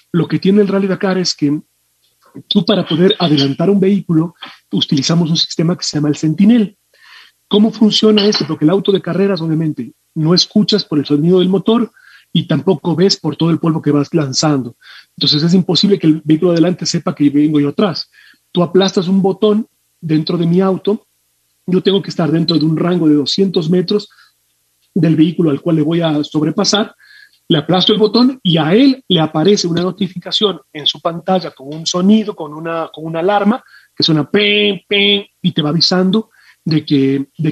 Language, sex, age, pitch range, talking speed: Spanish, male, 40-59, 155-200 Hz, 190 wpm